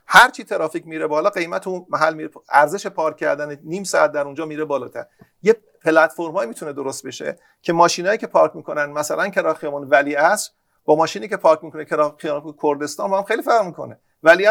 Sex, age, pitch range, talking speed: male, 40-59, 155-210 Hz, 180 wpm